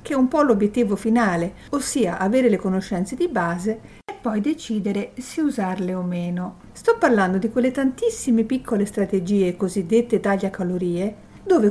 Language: Italian